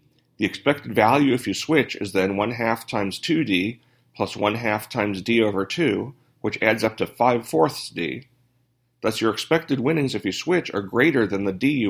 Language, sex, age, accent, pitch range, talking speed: English, male, 40-59, American, 100-125 Hz, 180 wpm